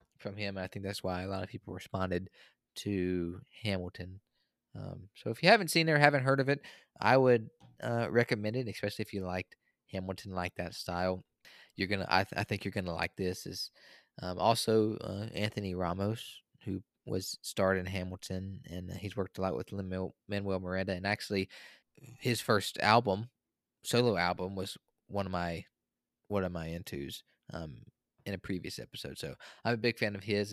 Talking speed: 185 wpm